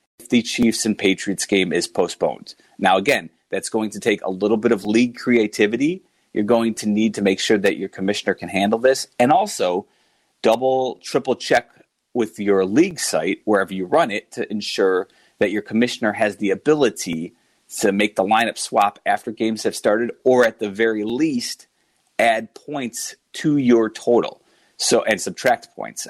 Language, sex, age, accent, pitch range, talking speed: English, male, 30-49, American, 100-120 Hz, 175 wpm